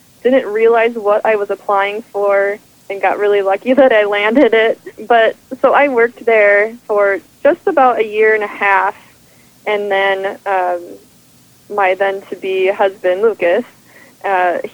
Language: English